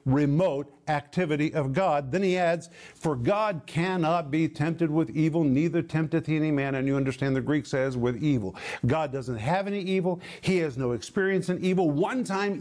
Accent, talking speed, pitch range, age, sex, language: American, 190 wpm, 145-185 Hz, 50-69, male, English